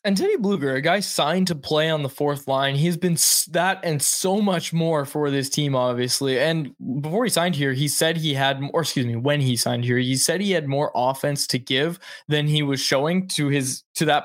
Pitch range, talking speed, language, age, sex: 135-170 Hz, 230 wpm, English, 20-39, male